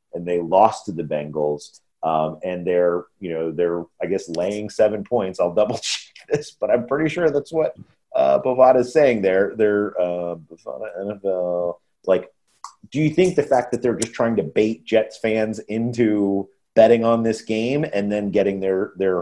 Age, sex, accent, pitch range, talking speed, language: 30-49, male, American, 90-120 Hz, 180 wpm, English